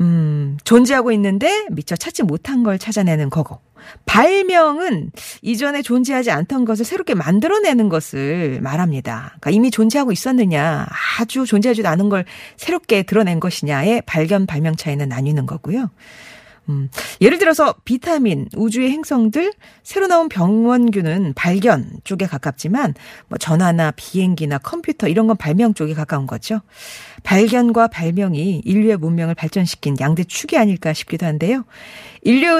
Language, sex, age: Korean, female, 40-59